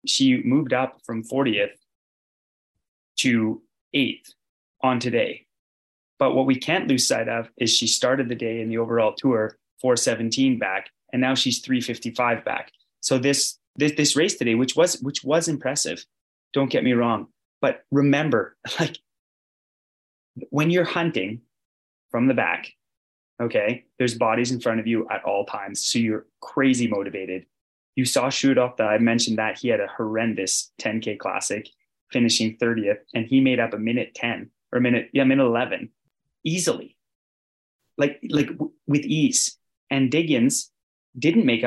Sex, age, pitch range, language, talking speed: male, 20-39, 115-150 Hz, English, 155 wpm